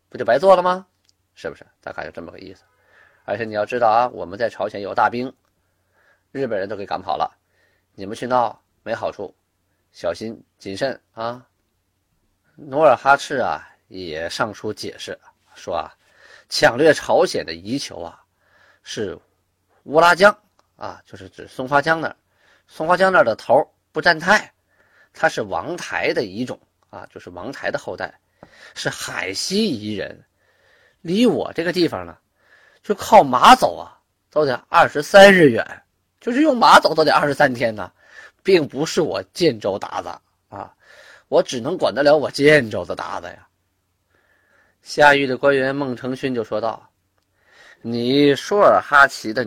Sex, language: male, Chinese